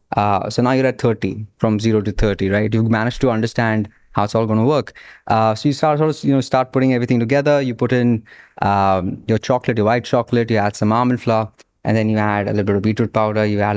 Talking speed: 250 wpm